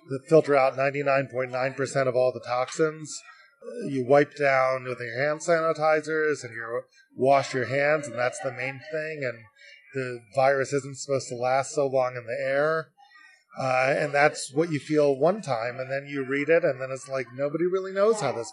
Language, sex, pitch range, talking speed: English, male, 135-170 Hz, 190 wpm